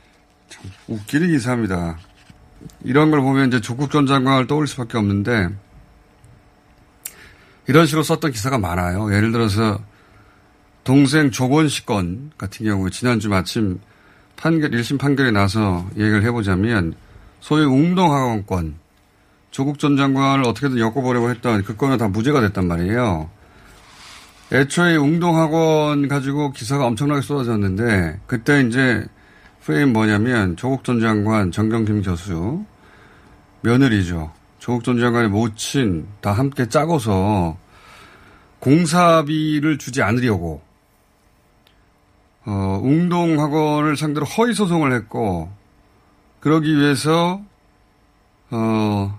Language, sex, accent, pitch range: Korean, male, native, 100-140 Hz